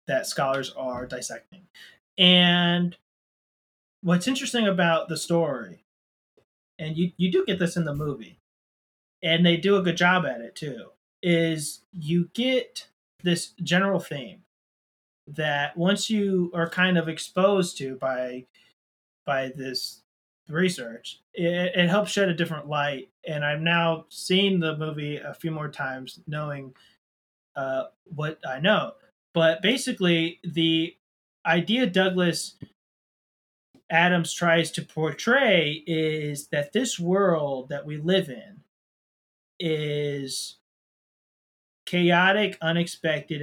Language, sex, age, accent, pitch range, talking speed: English, male, 30-49, American, 145-180 Hz, 120 wpm